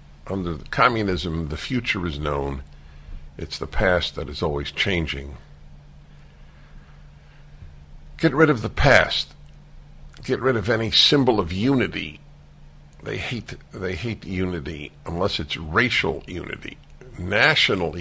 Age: 60-79